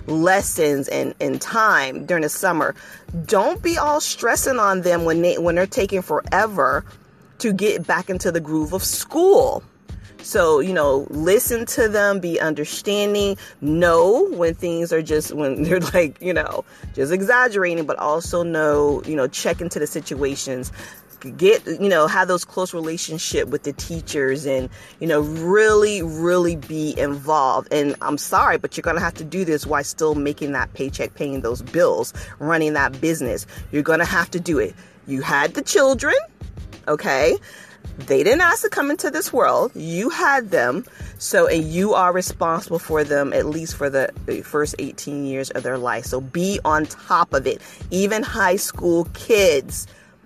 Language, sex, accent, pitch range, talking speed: English, female, American, 150-200 Hz, 175 wpm